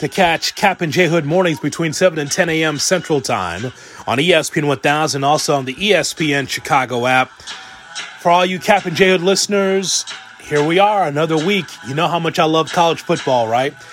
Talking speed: 200 wpm